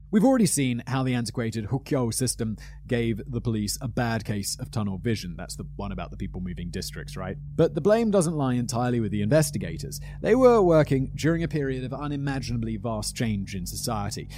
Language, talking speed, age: English, 195 wpm, 30-49